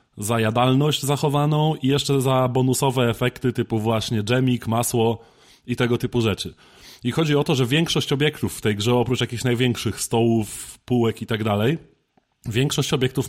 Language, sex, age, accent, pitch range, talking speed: Polish, male, 20-39, native, 120-140 Hz, 165 wpm